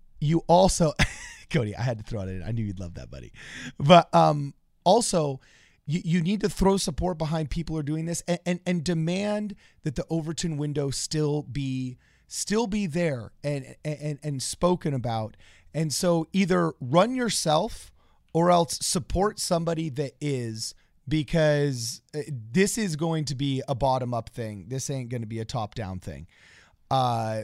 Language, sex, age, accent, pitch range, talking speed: English, male, 30-49, American, 120-165 Hz, 175 wpm